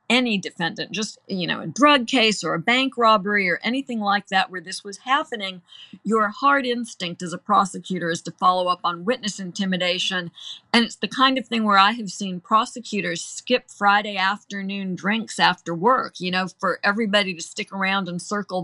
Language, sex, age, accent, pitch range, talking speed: English, female, 50-69, American, 190-230 Hz, 190 wpm